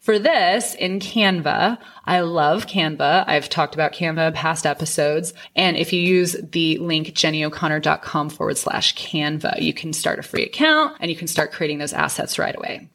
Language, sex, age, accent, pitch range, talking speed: English, female, 20-39, American, 165-220 Hz, 180 wpm